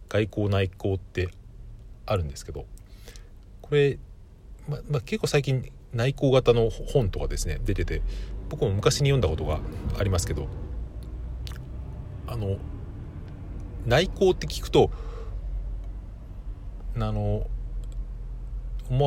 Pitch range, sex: 85-120 Hz, male